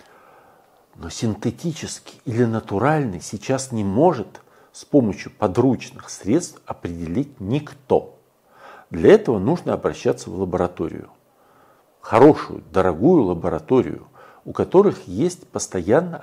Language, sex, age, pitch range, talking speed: Russian, male, 50-69, 100-145 Hz, 95 wpm